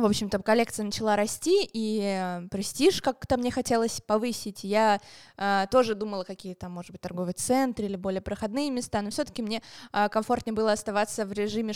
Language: Russian